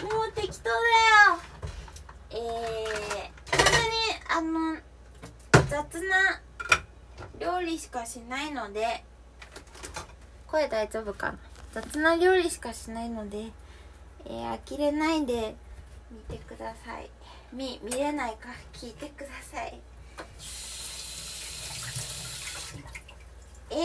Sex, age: female, 20-39